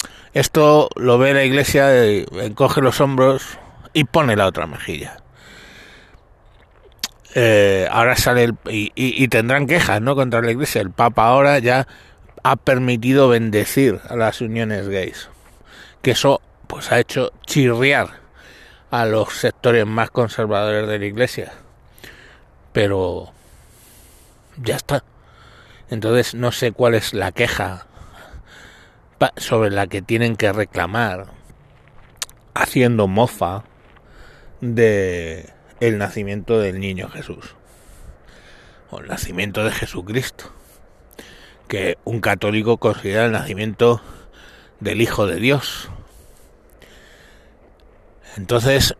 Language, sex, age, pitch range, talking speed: Spanish, male, 60-79, 105-125 Hz, 110 wpm